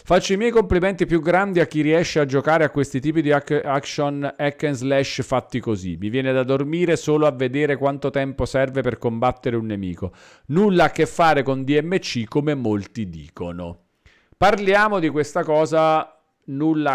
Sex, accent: male, native